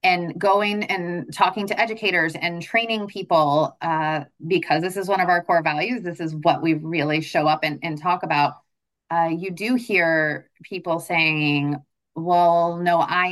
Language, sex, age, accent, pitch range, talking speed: English, female, 30-49, American, 165-220 Hz, 170 wpm